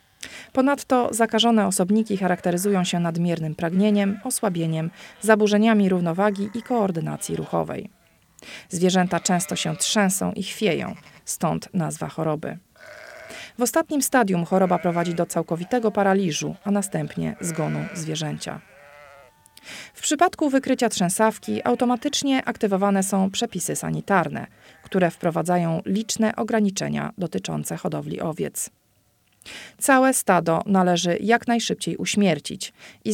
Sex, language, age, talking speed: female, Polish, 40-59, 105 wpm